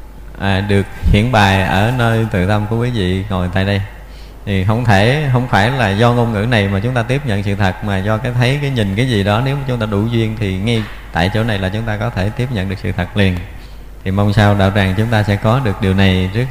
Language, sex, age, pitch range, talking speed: Vietnamese, male, 20-39, 100-115 Hz, 275 wpm